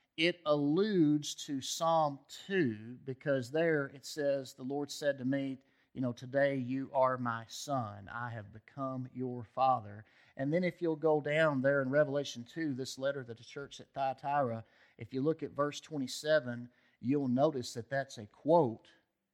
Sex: male